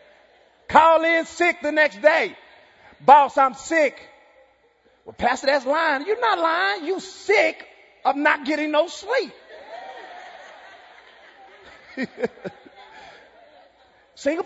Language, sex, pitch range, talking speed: English, male, 205-315 Hz, 100 wpm